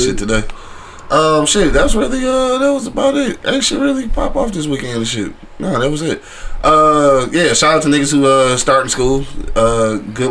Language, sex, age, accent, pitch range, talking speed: English, male, 20-39, American, 110-145 Hz, 215 wpm